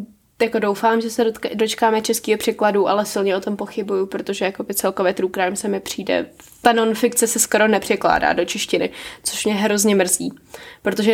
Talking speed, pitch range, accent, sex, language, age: 165 wpm, 195-230 Hz, native, female, Czech, 10-29